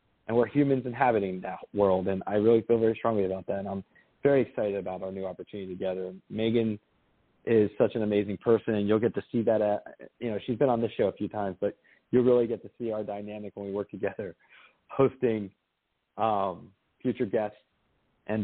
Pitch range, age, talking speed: 105-130 Hz, 30-49, 205 wpm